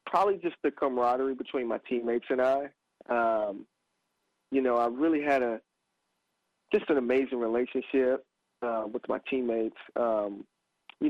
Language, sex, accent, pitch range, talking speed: English, male, American, 115-135 Hz, 140 wpm